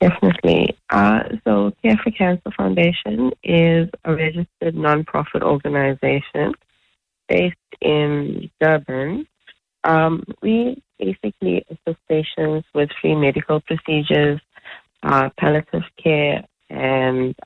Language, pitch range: English, 125-155 Hz